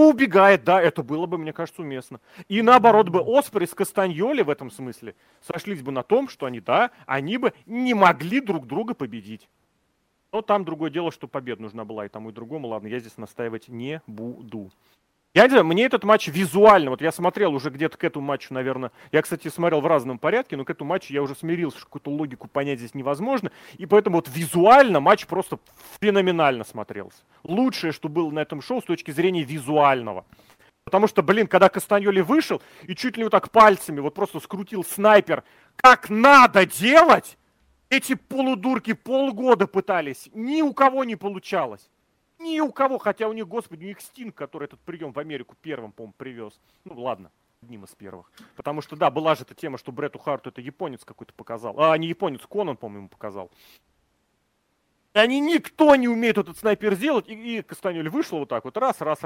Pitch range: 135-210 Hz